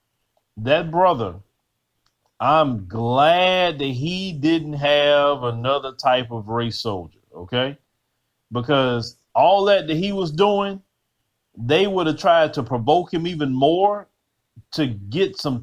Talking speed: 125 wpm